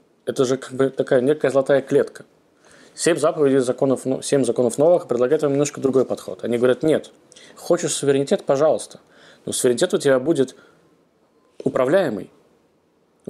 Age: 20-39